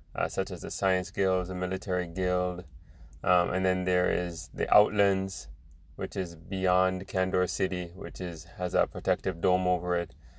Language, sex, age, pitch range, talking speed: English, male, 20-39, 85-95 Hz, 170 wpm